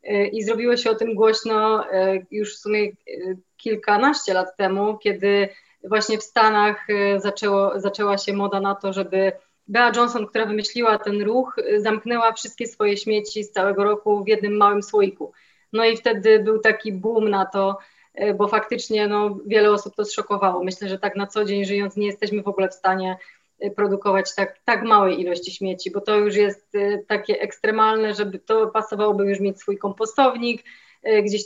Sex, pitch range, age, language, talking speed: female, 200-220 Hz, 20-39, Polish, 170 wpm